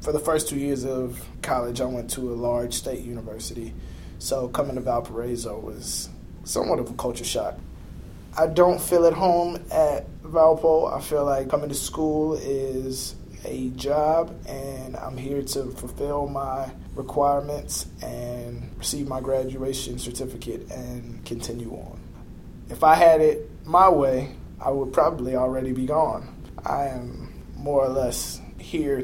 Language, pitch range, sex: English, 120-140 Hz, male